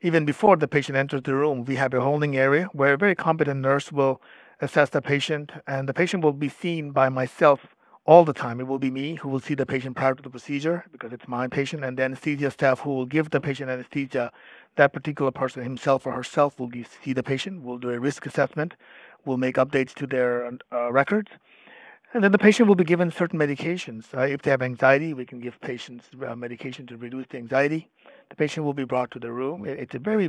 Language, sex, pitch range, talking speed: English, male, 130-150 Hz, 230 wpm